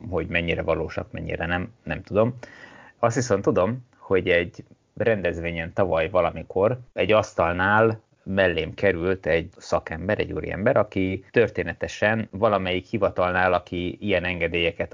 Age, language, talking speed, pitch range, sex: 30-49, Hungarian, 120 wpm, 85-105 Hz, male